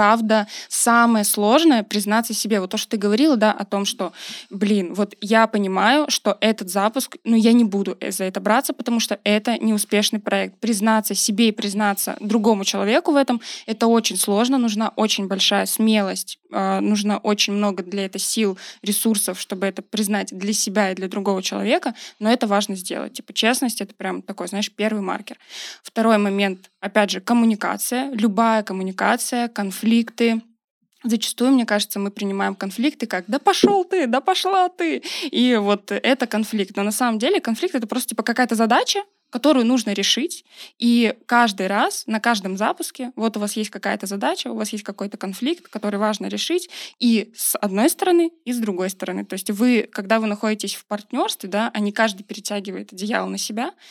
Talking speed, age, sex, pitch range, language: 185 wpm, 20-39, female, 205-245 Hz, Russian